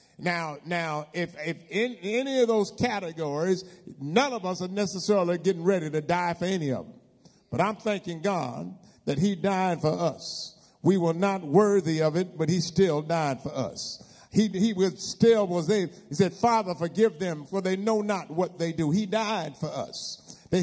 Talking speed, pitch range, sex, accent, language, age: 190 wpm, 160-210 Hz, male, American, English, 50-69